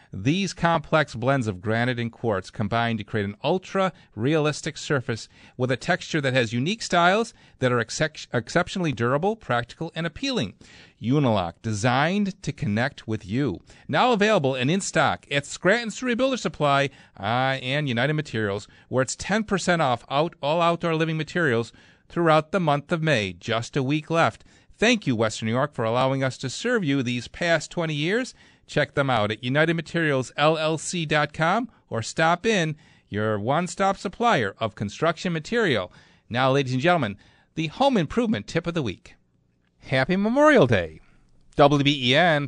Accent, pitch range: American, 115-170 Hz